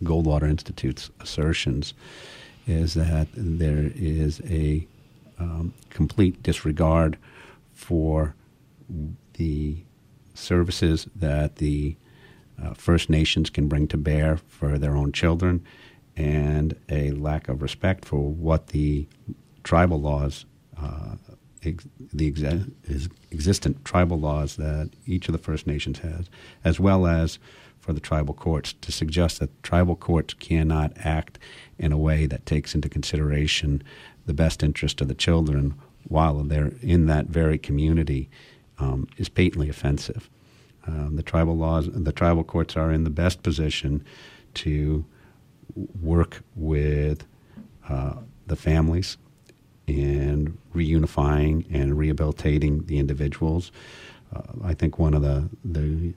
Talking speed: 125 wpm